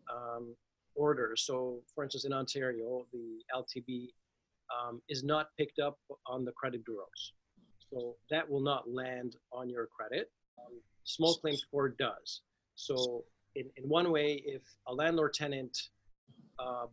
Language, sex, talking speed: English, male, 145 wpm